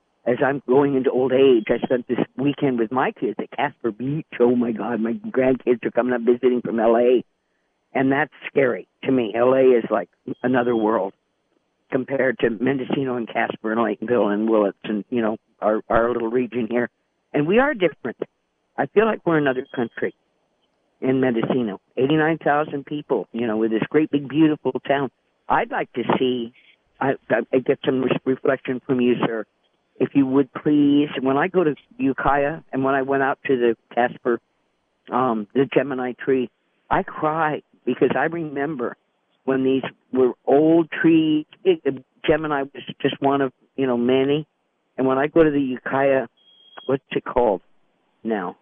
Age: 50-69